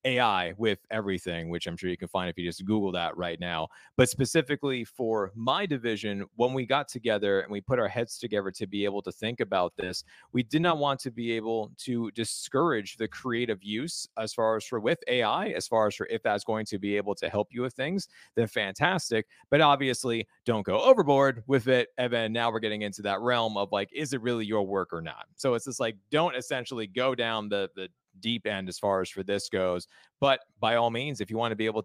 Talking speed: 235 wpm